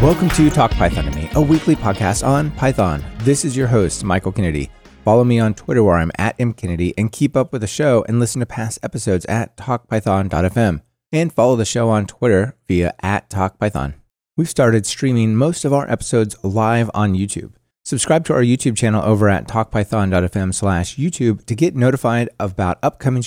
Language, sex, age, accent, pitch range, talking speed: English, male, 30-49, American, 95-130 Hz, 185 wpm